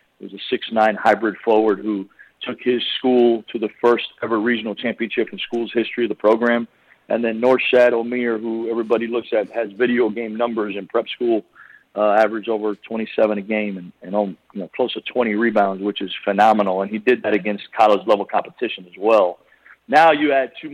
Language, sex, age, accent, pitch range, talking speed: English, male, 50-69, American, 110-125 Hz, 200 wpm